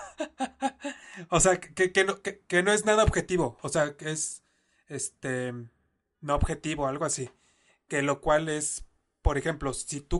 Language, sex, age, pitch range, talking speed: Spanish, male, 20-39, 130-160 Hz, 140 wpm